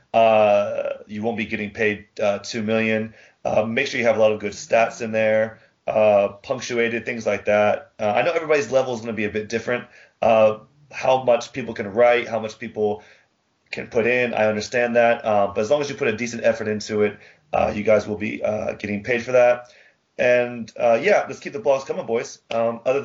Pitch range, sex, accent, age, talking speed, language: 110-130 Hz, male, American, 30-49, 225 wpm, English